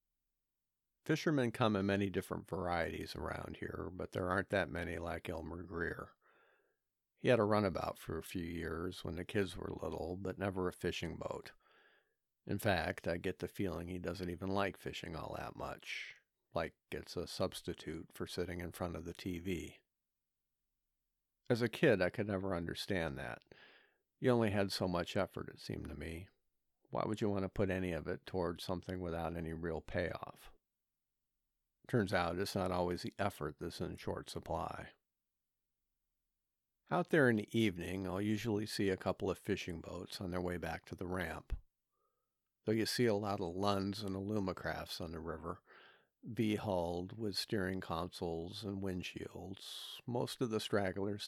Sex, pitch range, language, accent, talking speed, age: male, 85-100 Hz, English, American, 170 wpm, 50-69